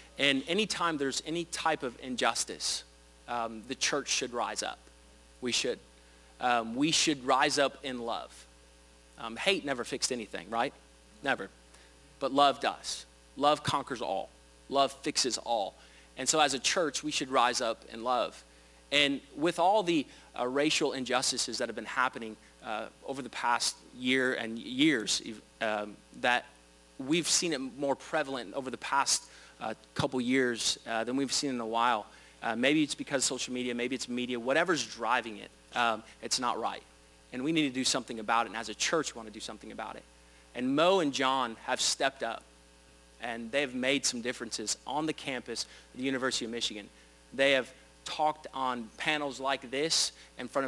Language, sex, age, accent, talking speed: English, male, 30-49, American, 180 wpm